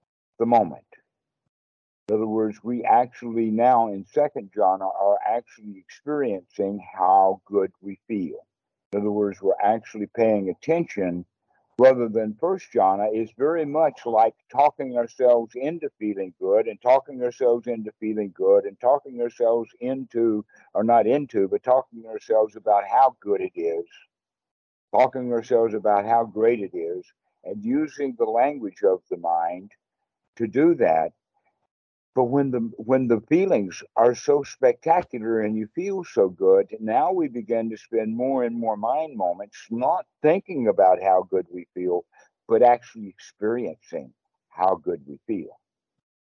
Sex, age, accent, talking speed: male, 60-79, American, 150 wpm